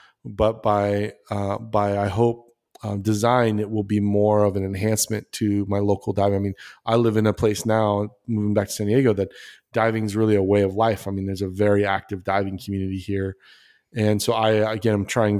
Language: English